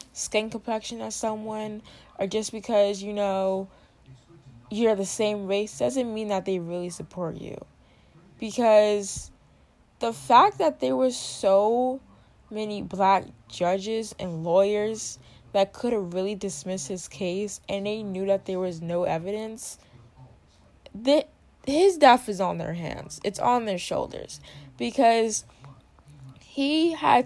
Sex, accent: female, American